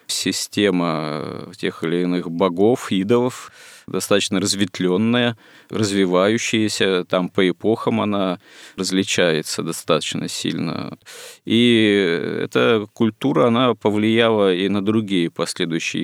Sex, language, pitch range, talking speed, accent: male, Russian, 85-105 Hz, 95 wpm, native